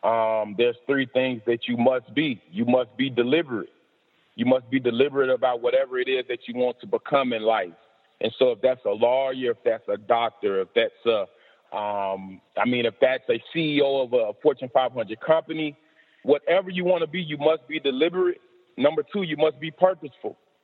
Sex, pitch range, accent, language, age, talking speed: male, 135-180 Hz, American, English, 30-49, 195 wpm